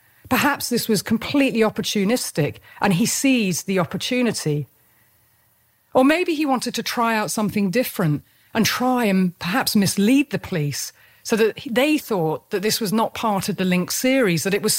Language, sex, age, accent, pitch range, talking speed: English, female, 40-59, British, 160-250 Hz, 170 wpm